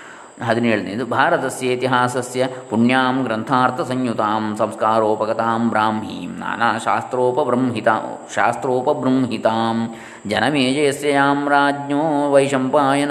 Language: Kannada